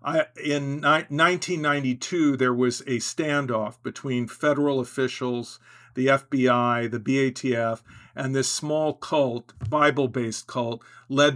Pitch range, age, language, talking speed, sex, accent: 120-135 Hz, 50-69, English, 105 wpm, male, American